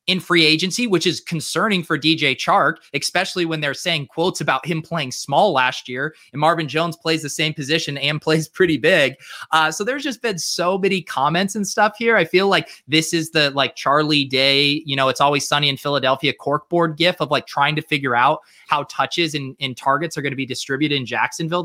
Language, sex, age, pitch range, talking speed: English, male, 20-39, 135-170 Hz, 215 wpm